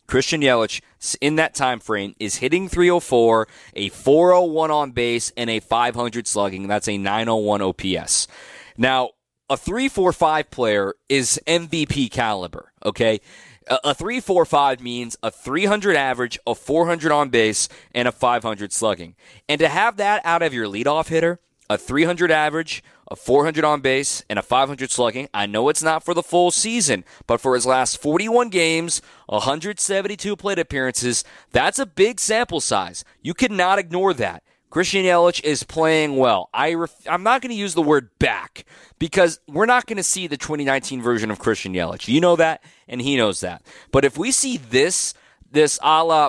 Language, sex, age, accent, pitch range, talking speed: English, male, 20-39, American, 120-175 Hz, 170 wpm